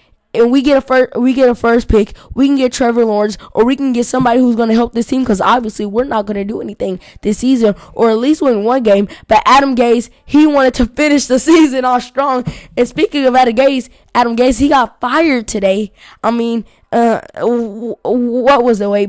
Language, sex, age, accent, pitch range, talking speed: English, female, 10-29, American, 210-250 Hz, 230 wpm